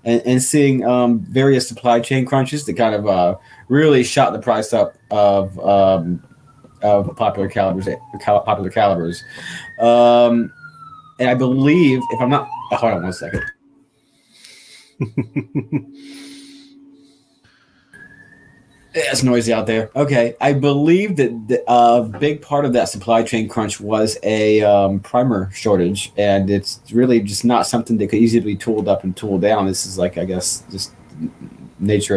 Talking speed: 145 wpm